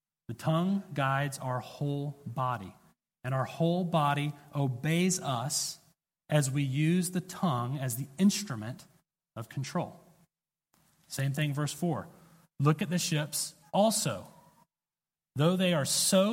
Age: 30-49